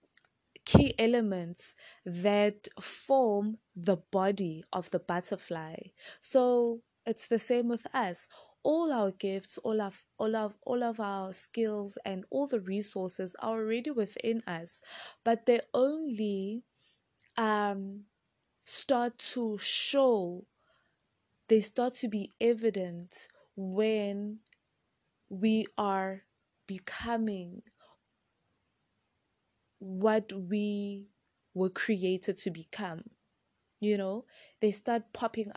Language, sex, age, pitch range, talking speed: English, female, 20-39, 195-230 Hz, 105 wpm